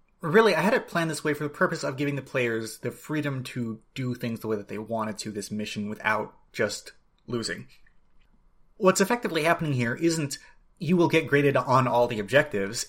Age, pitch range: 30-49, 120-170 Hz